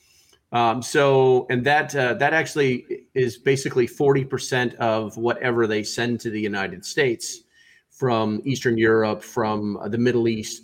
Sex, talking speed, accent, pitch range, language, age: male, 145 wpm, American, 115-135 Hz, English, 40-59